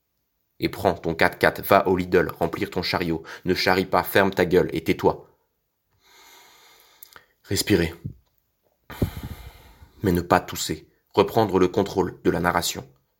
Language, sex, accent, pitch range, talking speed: French, male, French, 85-95 Hz, 130 wpm